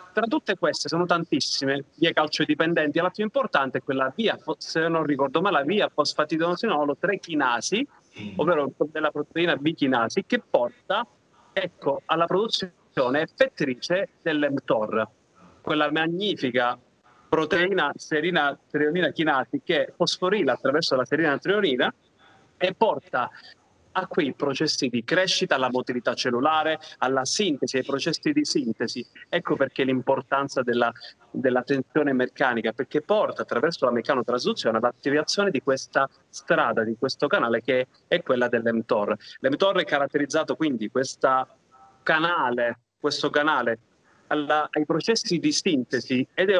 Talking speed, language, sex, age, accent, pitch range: 120 wpm, Italian, male, 30-49, native, 130-175 Hz